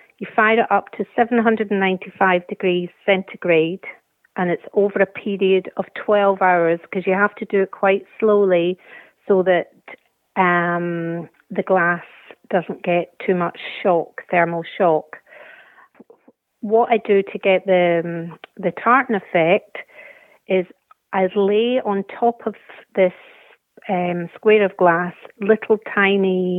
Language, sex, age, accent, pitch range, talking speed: English, female, 40-59, British, 180-210 Hz, 135 wpm